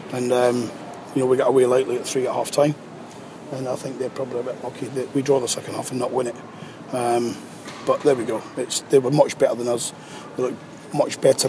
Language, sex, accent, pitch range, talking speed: English, male, British, 130-145 Hz, 245 wpm